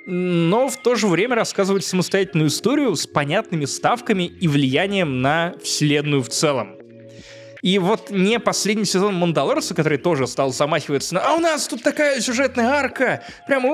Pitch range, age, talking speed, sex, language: 125-185 Hz, 20-39, 155 wpm, male, Russian